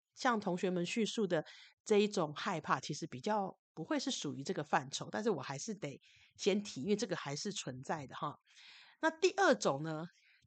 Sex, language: female, Chinese